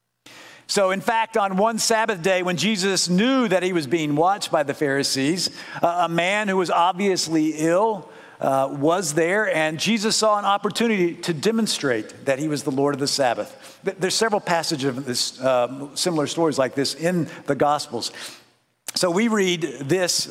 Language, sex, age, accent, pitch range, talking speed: English, male, 50-69, American, 135-185 Hz, 175 wpm